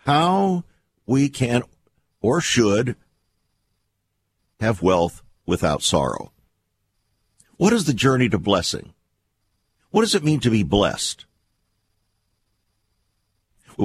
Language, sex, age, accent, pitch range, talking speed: English, male, 50-69, American, 100-135 Hz, 100 wpm